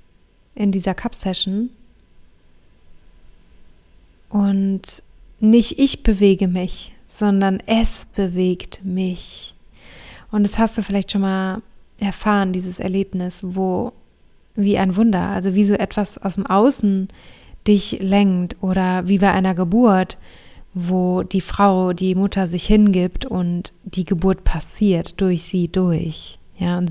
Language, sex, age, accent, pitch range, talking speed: German, female, 20-39, German, 185-205 Hz, 125 wpm